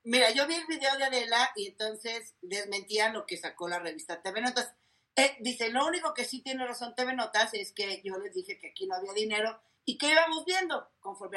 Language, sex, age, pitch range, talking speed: Spanish, female, 40-59, 195-265 Hz, 220 wpm